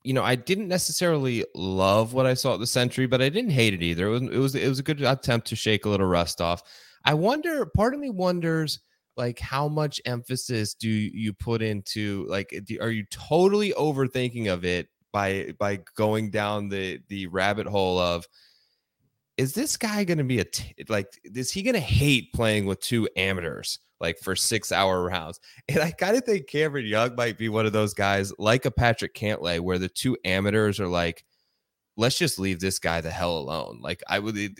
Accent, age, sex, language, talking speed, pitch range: American, 20-39, male, English, 205 wpm, 100-130 Hz